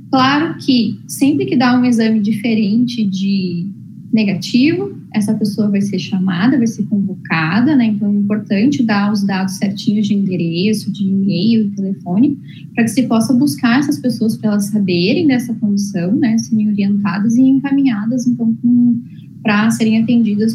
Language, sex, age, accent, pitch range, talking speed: Portuguese, female, 10-29, Brazilian, 200-245 Hz, 155 wpm